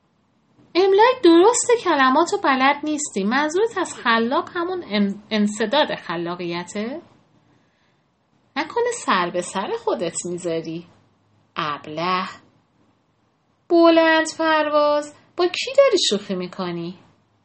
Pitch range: 175-270 Hz